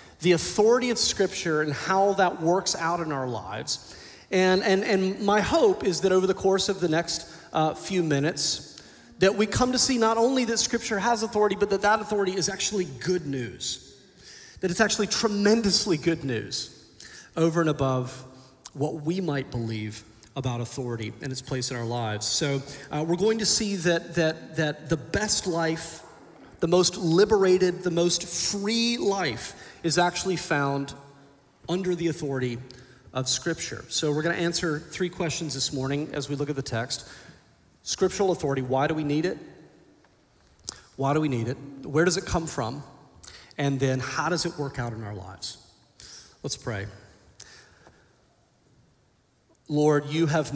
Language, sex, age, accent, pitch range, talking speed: English, male, 30-49, American, 135-185 Hz, 165 wpm